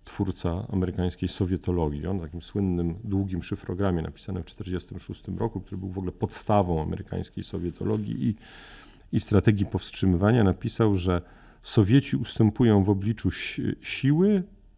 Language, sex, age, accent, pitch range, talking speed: Polish, male, 40-59, native, 90-115 Hz, 125 wpm